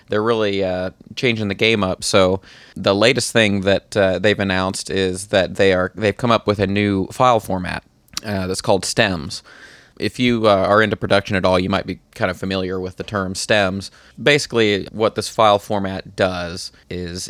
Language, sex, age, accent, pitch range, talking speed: English, male, 30-49, American, 95-105 Hz, 200 wpm